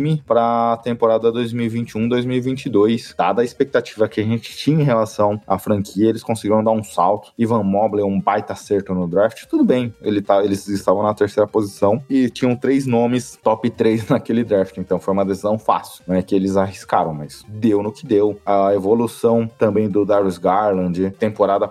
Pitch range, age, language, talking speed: 100-120 Hz, 20-39, Portuguese, 180 wpm